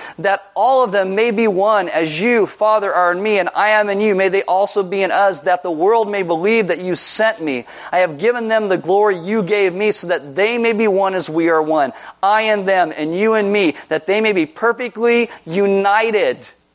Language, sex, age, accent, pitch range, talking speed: English, male, 40-59, American, 155-200 Hz, 235 wpm